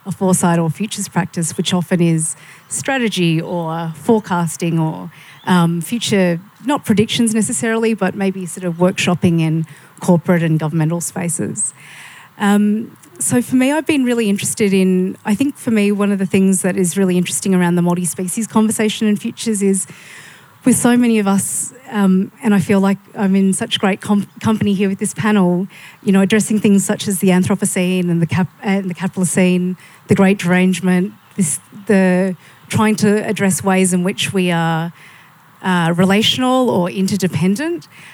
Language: English